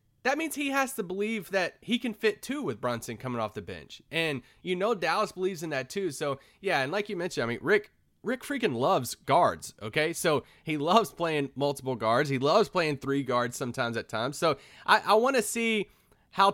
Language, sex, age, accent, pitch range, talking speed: English, male, 30-49, American, 130-185 Hz, 215 wpm